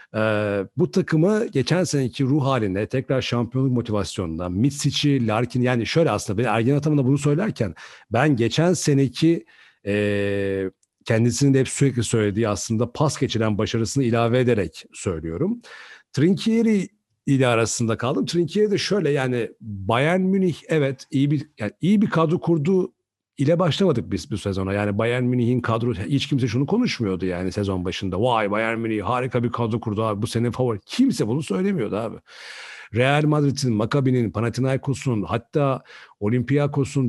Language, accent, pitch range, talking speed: Turkish, native, 105-145 Hz, 145 wpm